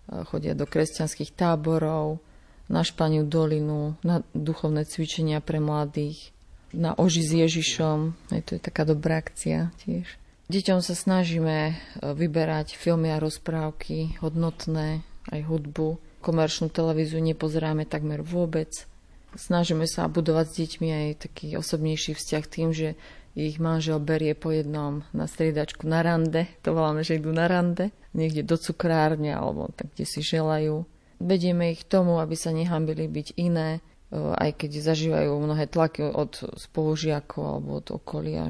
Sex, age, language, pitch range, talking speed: female, 30-49, Slovak, 150-165 Hz, 140 wpm